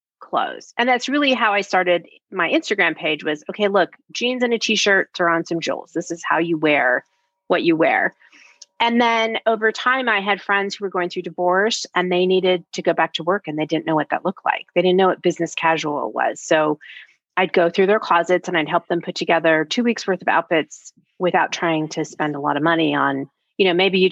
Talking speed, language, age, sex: 235 wpm, English, 30-49, female